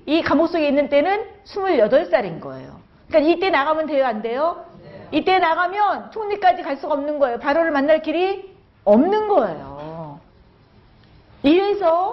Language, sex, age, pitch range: Korean, female, 40-59, 230-360 Hz